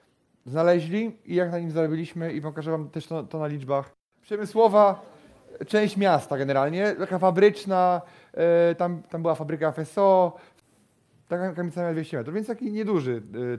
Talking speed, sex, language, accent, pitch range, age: 155 wpm, male, Polish, native, 150-185 Hz, 30-49